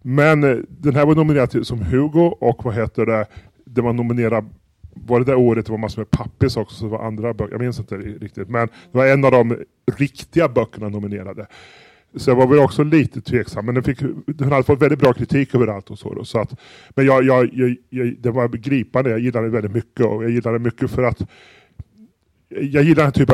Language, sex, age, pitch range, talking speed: Swedish, female, 30-49, 110-130 Hz, 230 wpm